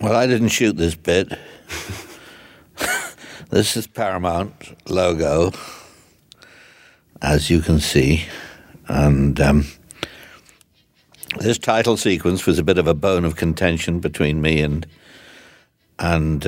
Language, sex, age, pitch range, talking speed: English, male, 60-79, 75-85 Hz, 115 wpm